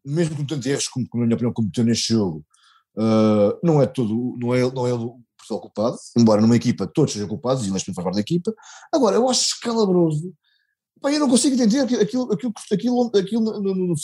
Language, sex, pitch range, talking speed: Portuguese, male, 140-230 Hz, 235 wpm